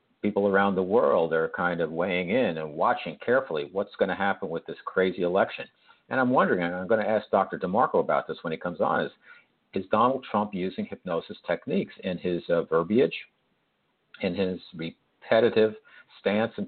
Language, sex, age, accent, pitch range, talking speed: English, male, 50-69, American, 90-110 Hz, 185 wpm